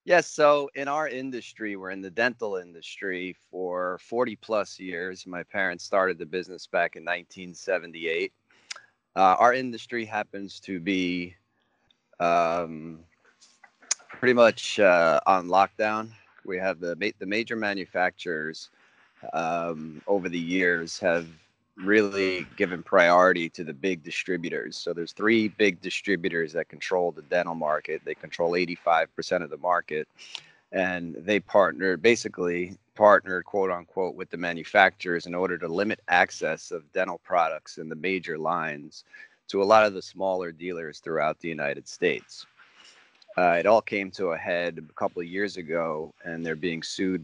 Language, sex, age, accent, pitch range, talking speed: English, male, 30-49, American, 85-105 Hz, 145 wpm